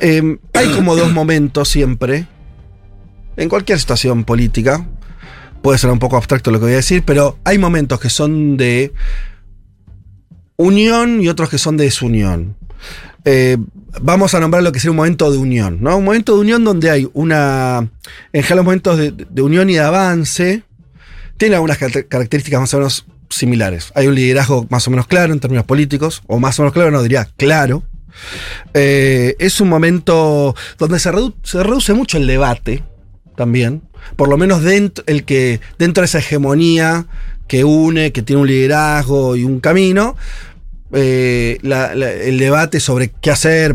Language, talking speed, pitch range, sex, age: Spanish, 175 wpm, 125-165 Hz, male, 30-49